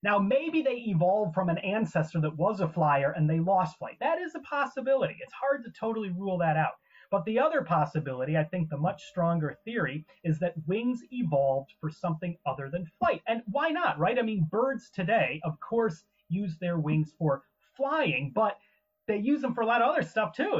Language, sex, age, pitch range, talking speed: English, male, 30-49, 155-215 Hz, 205 wpm